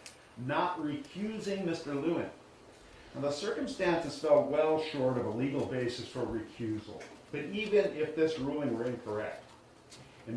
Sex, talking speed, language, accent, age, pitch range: male, 140 wpm, English, American, 50-69, 120-155 Hz